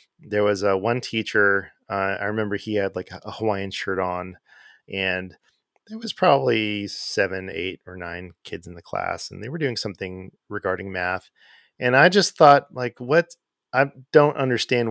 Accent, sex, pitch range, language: American, male, 95-125 Hz, English